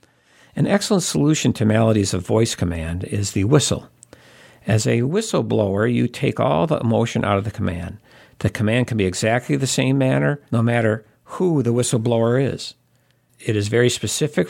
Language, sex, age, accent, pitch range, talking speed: English, male, 50-69, American, 105-125 Hz, 170 wpm